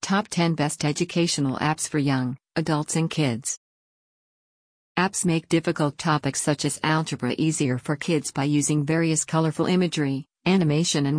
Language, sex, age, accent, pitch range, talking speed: English, female, 50-69, American, 145-165 Hz, 145 wpm